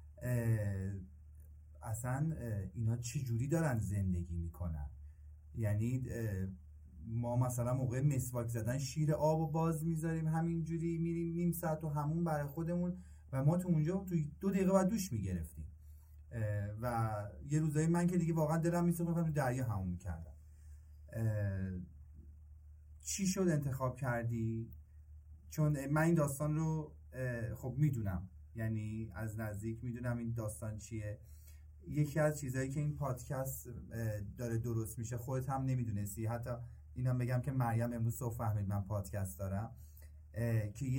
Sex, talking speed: male, 130 wpm